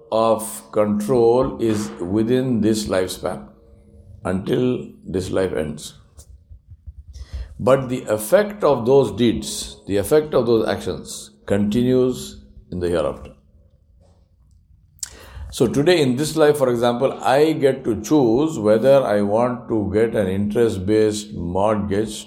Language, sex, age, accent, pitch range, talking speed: English, male, 60-79, Indian, 85-130 Hz, 120 wpm